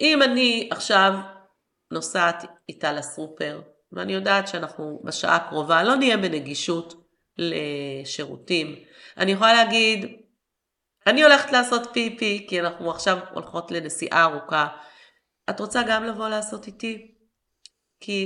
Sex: female